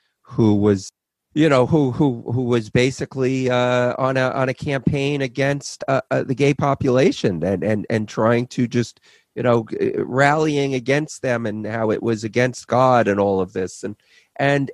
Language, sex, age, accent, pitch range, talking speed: English, male, 40-59, American, 110-145 Hz, 175 wpm